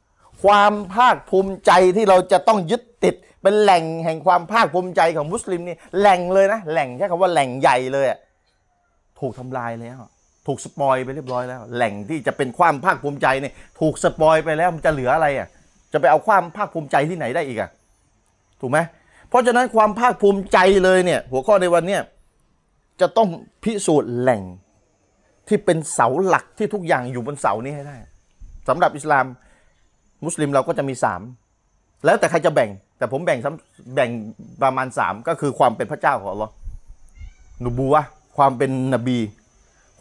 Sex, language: male, Thai